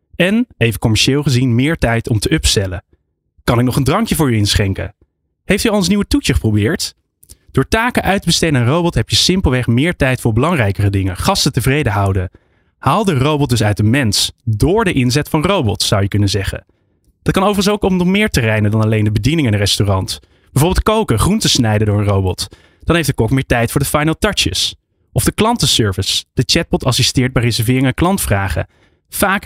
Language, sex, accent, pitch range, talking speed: Dutch, male, Dutch, 105-160 Hz, 210 wpm